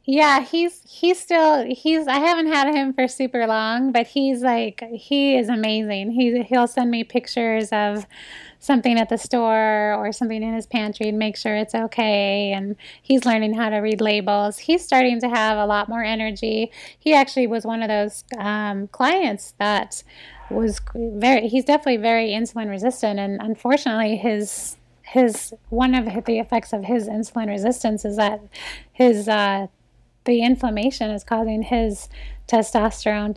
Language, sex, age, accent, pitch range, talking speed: English, female, 20-39, American, 210-245 Hz, 165 wpm